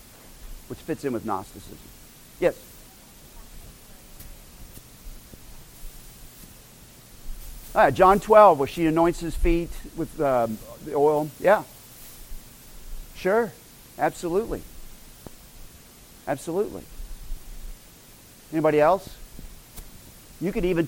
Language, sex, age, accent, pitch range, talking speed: English, male, 50-69, American, 140-230 Hz, 80 wpm